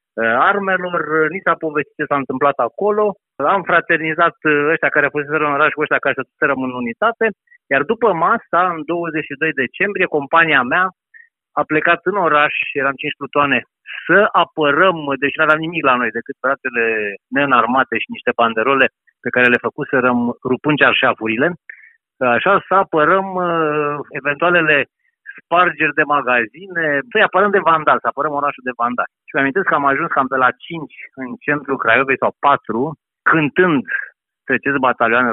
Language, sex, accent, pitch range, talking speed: Romanian, male, native, 135-170 Hz, 160 wpm